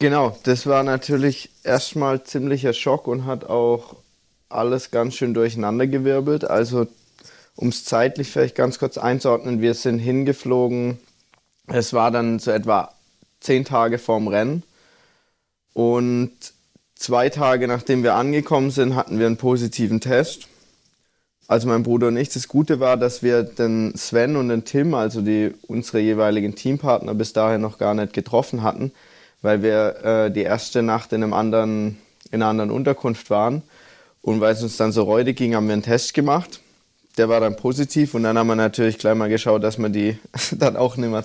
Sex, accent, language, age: male, German, German, 20-39